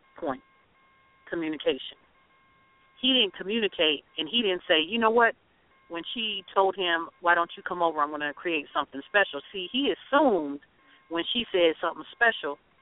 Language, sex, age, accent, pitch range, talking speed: English, female, 40-59, American, 150-200 Hz, 165 wpm